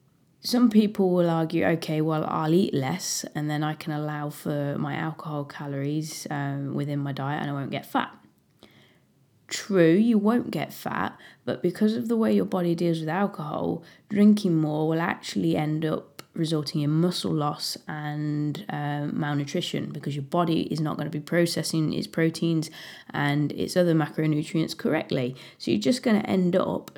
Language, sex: English, female